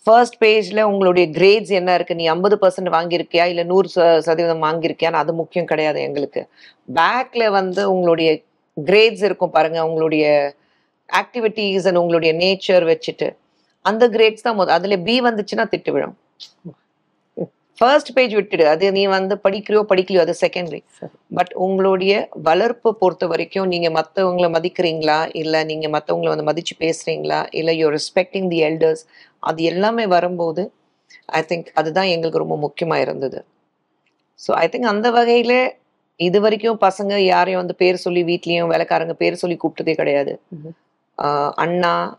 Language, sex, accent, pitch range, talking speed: Tamil, female, native, 160-195 Hz, 70 wpm